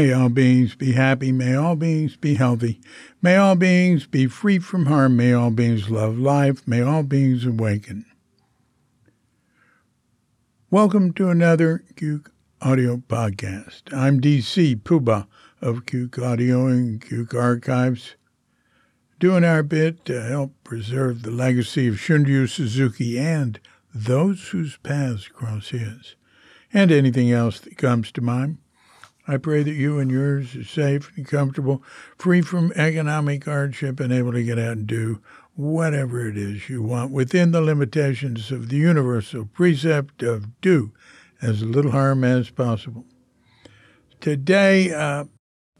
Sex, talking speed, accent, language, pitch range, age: male, 140 wpm, American, English, 120-155 Hz, 60-79